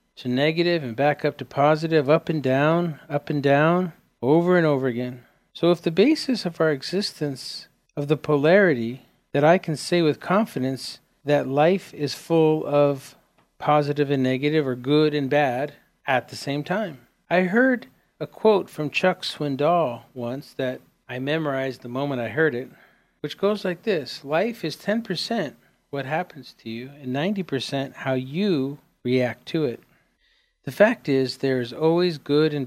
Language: English